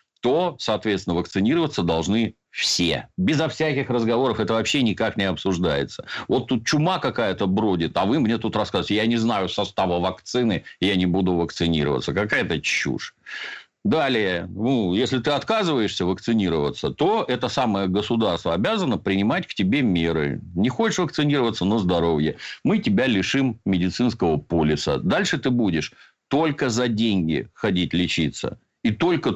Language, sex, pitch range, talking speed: Russian, male, 95-130 Hz, 140 wpm